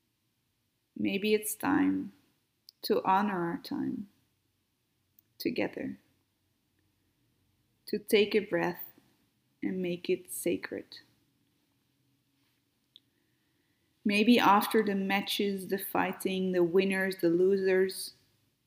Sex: female